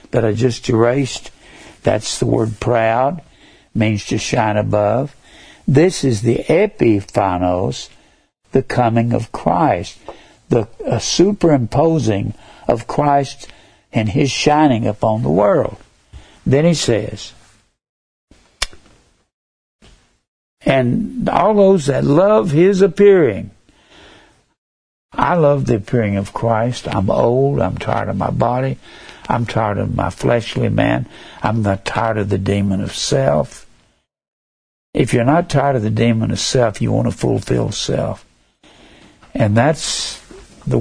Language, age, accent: English, 60-79, American